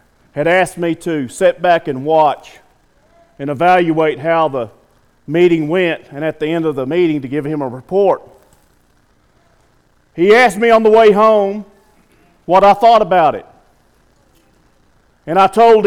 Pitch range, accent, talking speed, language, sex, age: 115-185 Hz, American, 155 wpm, English, male, 50-69